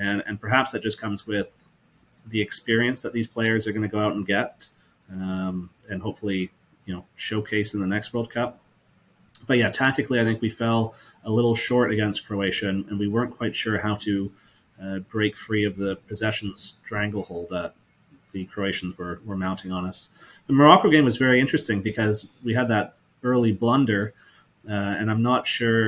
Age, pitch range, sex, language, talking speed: 30-49, 100-115 Hz, male, English, 190 wpm